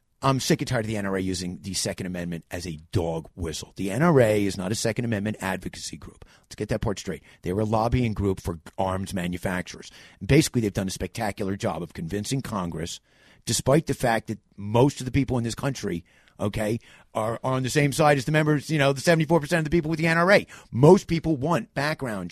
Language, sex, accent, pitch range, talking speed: English, male, American, 95-135 Hz, 220 wpm